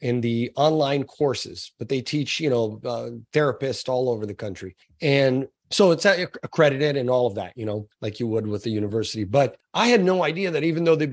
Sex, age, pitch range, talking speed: male, 30-49, 120-160 Hz, 215 wpm